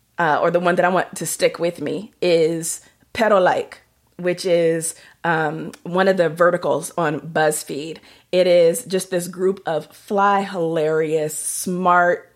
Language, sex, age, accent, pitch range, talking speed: English, female, 30-49, American, 165-195 Hz, 150 wpm